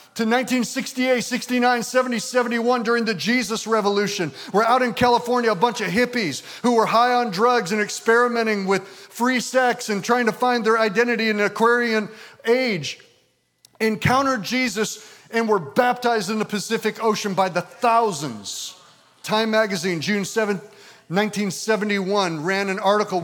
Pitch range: 160-225 Hz